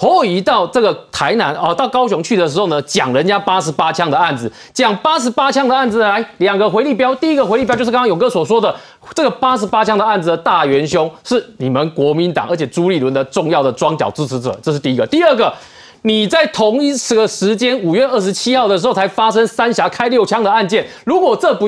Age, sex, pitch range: 30-49, male, 170-265 Hz